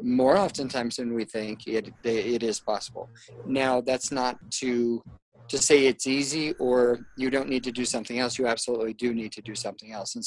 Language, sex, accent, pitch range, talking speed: English, male, American, 115-135 Hz, 200 wpm